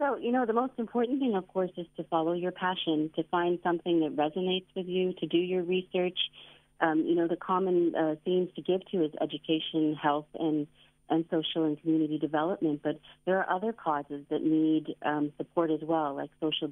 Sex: female